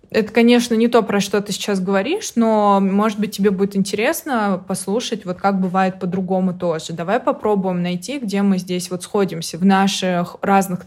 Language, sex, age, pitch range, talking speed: Russian, female, 20-39, 185-220 Hz, 175 wpm